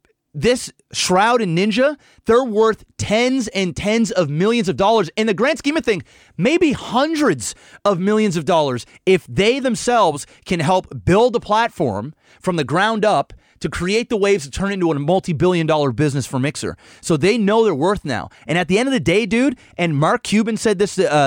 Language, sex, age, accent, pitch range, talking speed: English, male, 30-49, American, 165-220 Hz, 195 wpm